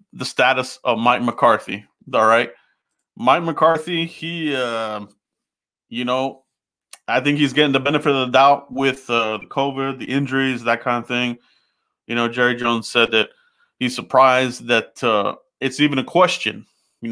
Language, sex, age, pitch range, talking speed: English, male, 30-49, 120-150 Hz, 165 wpm